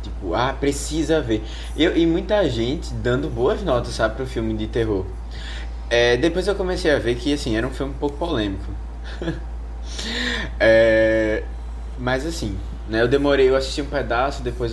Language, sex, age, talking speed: Portuguese, male, 20-39, 150 wpm